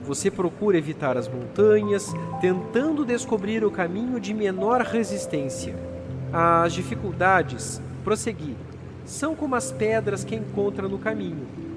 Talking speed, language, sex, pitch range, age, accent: 115 wpm, Portuguese, male, 155-220 Hz, 40-59, Brazilian